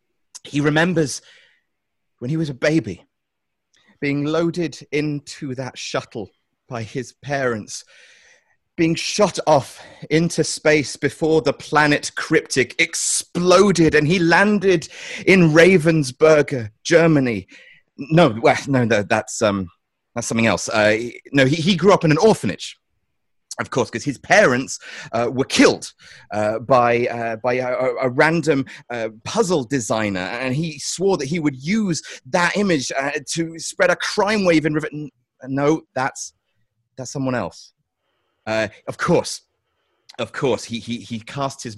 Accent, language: British, English